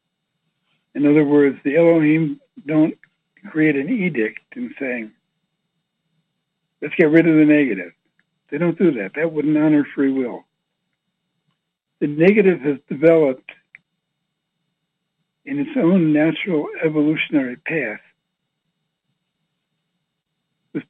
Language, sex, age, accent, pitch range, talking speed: English, male, 60-79, American, 155-180 Hz, 105 wpm